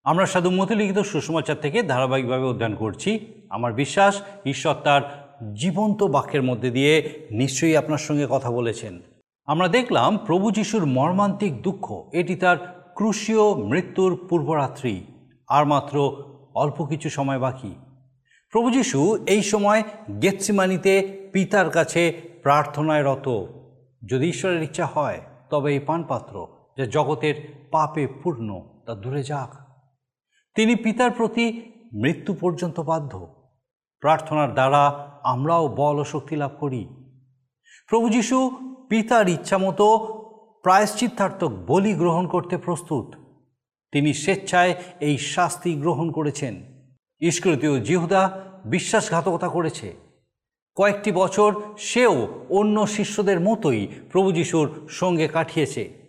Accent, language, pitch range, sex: native, Bengali, 145-195 Hz, male